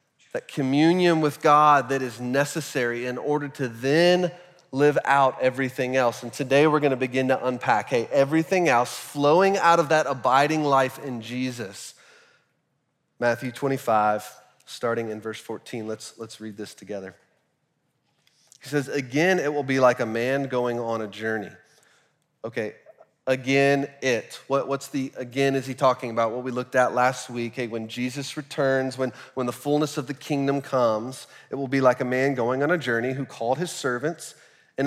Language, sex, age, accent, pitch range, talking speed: English, male, 30-49, American, 120-145 Hz, 170 wpm